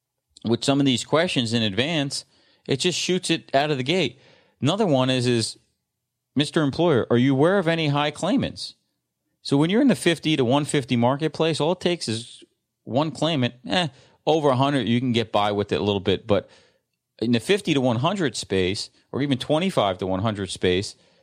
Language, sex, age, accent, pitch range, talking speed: English, male, 30-49, American, 115-145 Hz, 190 wpm